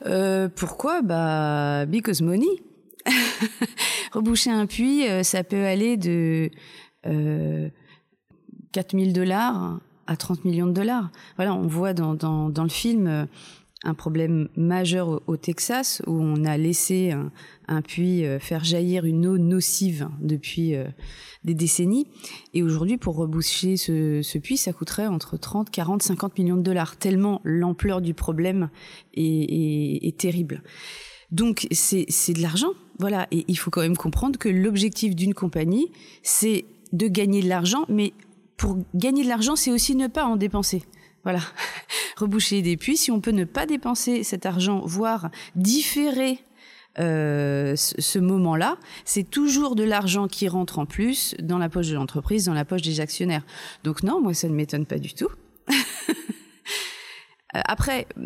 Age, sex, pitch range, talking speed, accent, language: 30-49, female, 160-210 Hz, 155 wpm, French, French